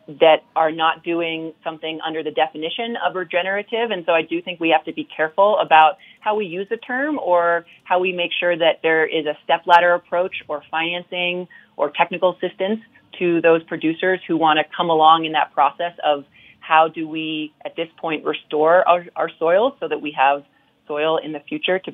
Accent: American